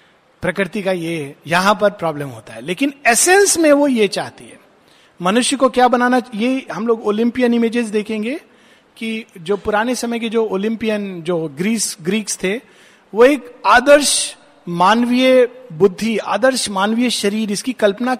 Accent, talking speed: native, 150 wpm